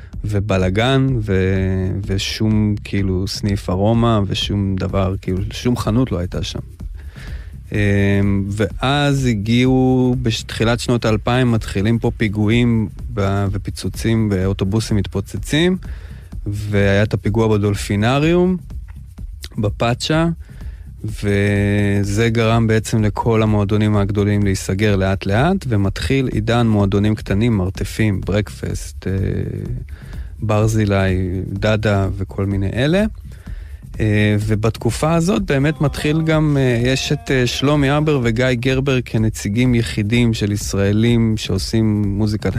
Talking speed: 95 wpm